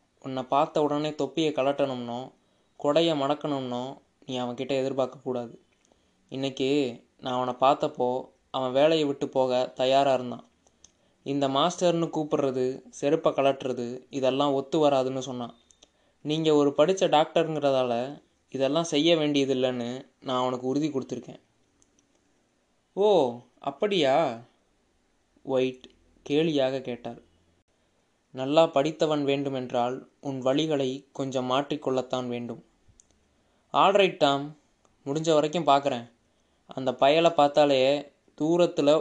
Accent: native